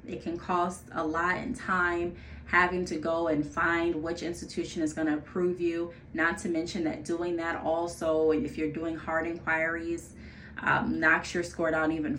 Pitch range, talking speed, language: 160-190 Hz, 180 wpm, English